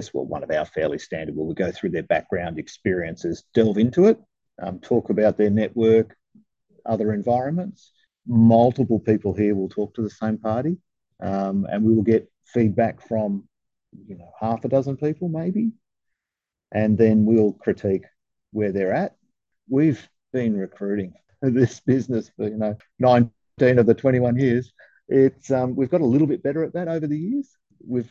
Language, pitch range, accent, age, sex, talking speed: English, 105-135 Hz, Australian, 50-69, male, 170 wpm